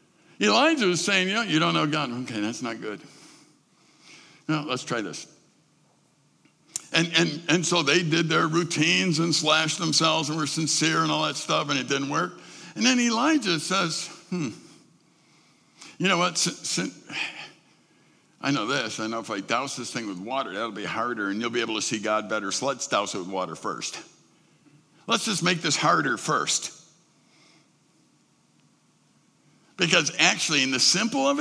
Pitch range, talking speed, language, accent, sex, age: 140-170 Hz, 165 wpm, English, American, male, 60-79